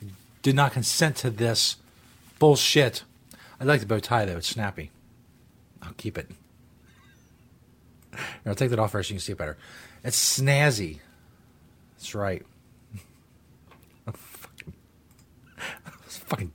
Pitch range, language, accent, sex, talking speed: 95-130 Hz, English, American, male, 120 wpm